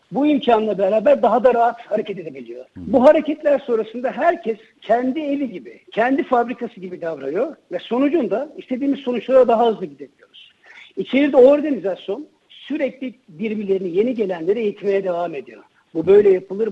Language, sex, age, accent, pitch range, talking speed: Turkish, male, 60-79, native, 195-265 Hz, 140 wpm